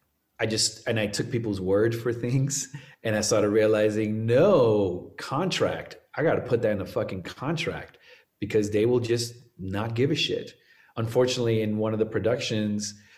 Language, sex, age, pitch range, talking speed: English, male, 30-49, 100-120 Hz, 175 wpm